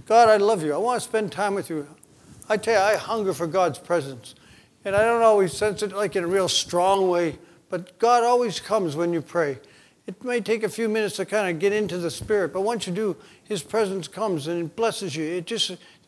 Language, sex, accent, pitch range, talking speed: English, male, American, 160-200 Hz, 240 wpm